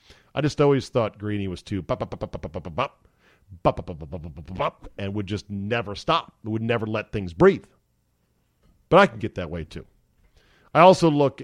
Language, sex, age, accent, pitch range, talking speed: English, male, 40-59, American, 100-125 Hz, 140 wpm